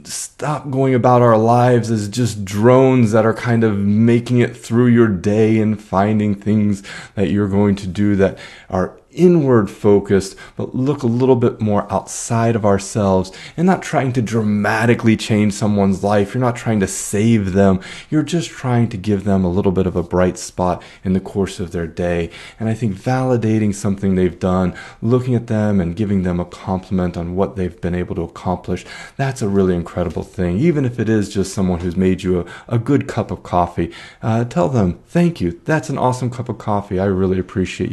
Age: 30-49